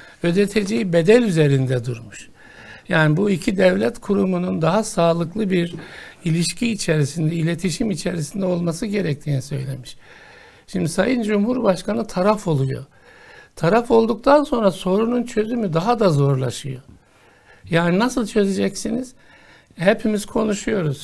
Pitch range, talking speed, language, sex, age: 165-220 Hz, 105 wpm, Turkish, male, 60-79